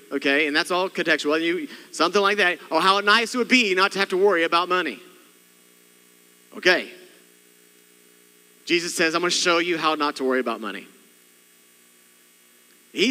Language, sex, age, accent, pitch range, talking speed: English, male, 40-59, American, 140-210 Hz, 165 wpm